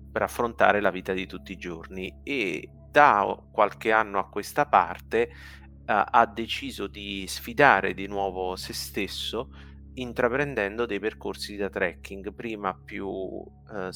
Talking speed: 140 wpm